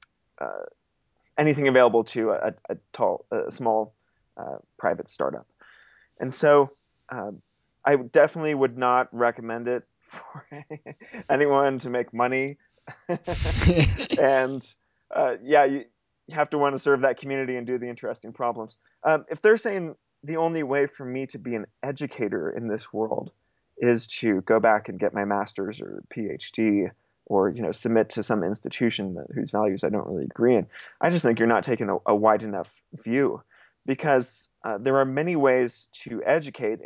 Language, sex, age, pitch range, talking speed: English, male, 20-39, 115-145 Hz, 165 wpm